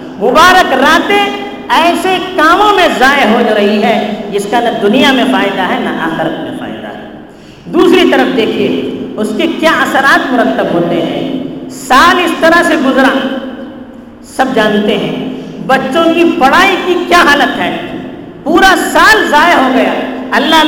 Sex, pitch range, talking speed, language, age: female, 255-350 Hz, 155 wpm, Urdu, 50-69